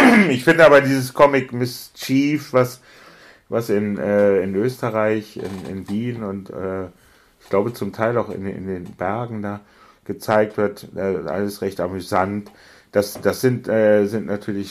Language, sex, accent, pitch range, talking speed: German, male, German, 95-115 Hz, 155 wpm